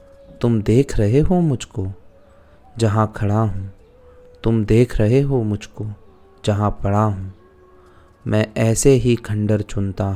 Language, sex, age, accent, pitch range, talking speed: Hindi, male, 30-49, native, 100-125 Hz, 125 wpm